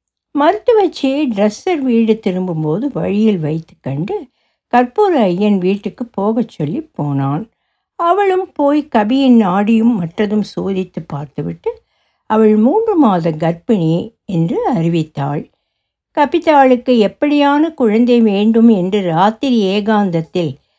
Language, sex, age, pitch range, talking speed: Tamil, female, 60-79, 180-270 Hz, 95 wpm